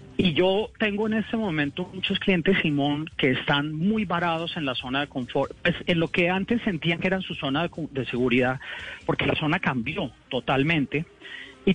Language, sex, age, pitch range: Spanish, male, 30-49, 145-195 Hz